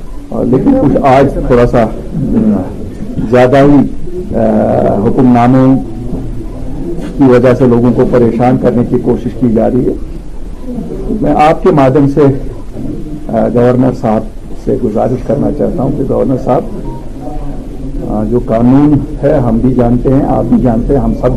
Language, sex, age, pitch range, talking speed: Urdu, male, 50-69, 115-140 Hz, 140 wpm